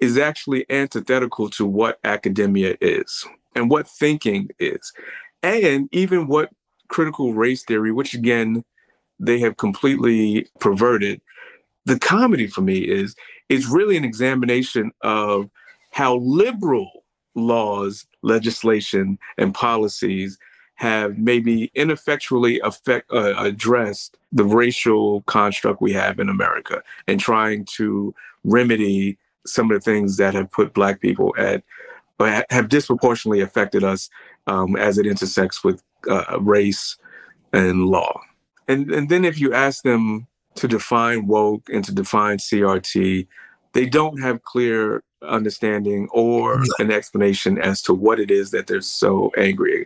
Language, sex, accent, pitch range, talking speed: English, male, American, 105-135 Hz, 135 wpm